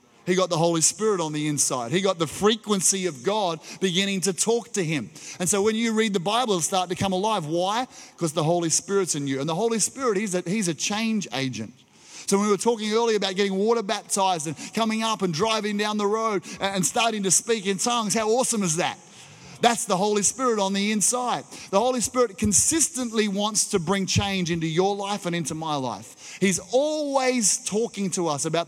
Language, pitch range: English, 175-220 Hz